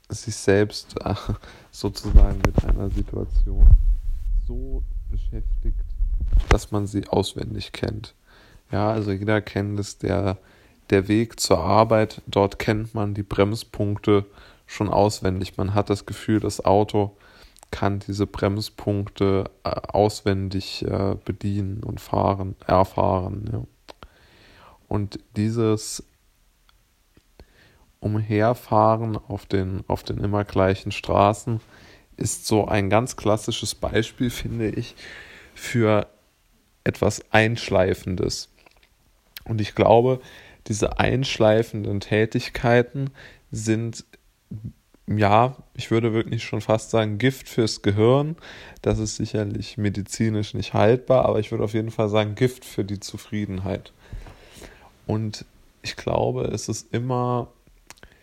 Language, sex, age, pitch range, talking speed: German, male, 20-39, 100-110 Hz, 110 wpm